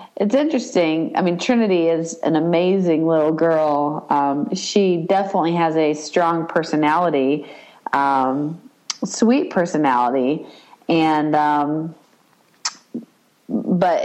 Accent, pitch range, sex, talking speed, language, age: American, 150-190 Hz, female, 100 wpm, English, 40-59